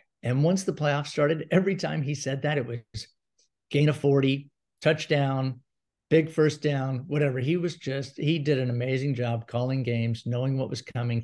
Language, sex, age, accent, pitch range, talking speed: English, male, 50-69, American, 120-150 Hz, 180 wpm